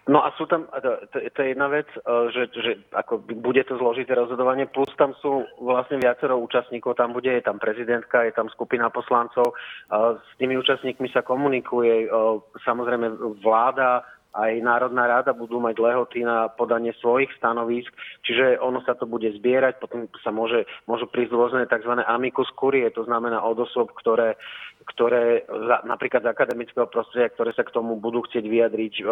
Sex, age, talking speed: male, 30-49, 160 wpm